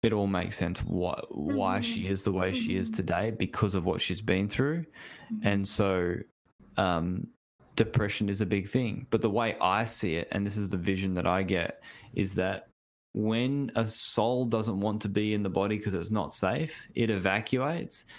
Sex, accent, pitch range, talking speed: male, Australian, 100-115 Hz, 190 wpm